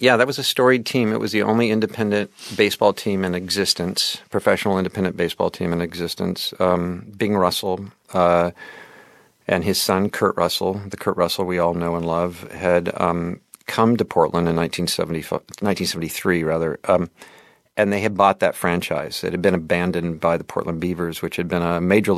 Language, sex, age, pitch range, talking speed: English, male, 50-69, 85-100 Hz, 180 wpm